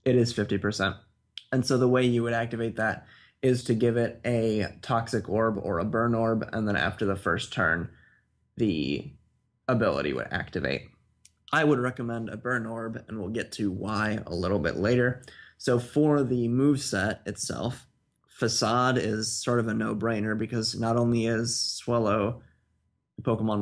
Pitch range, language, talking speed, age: 105-120 Hz, English, 165 wpm, 20-39